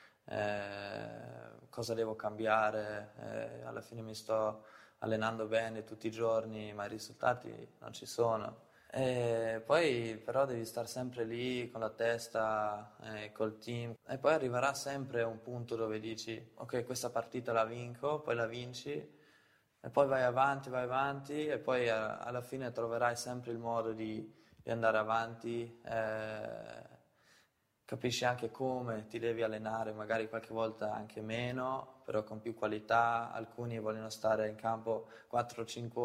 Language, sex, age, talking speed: Italian, male, 20-39, 150 wpm